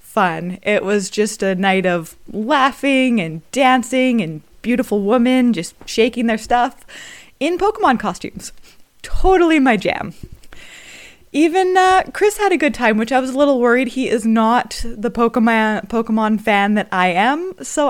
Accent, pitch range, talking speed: American, 200-270 Hz, 160 wpm